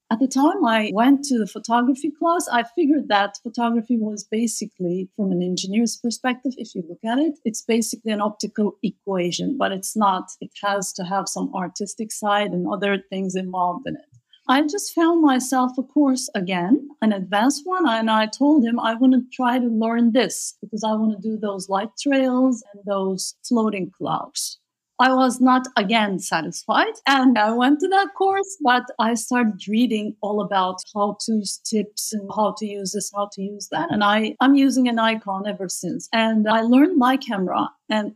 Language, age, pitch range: English, 50-69, 200-265 Hz